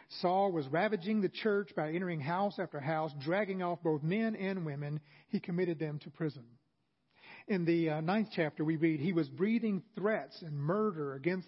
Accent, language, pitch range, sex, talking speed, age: American, English, 155-200 Hz, male, 185 wpm, 40-59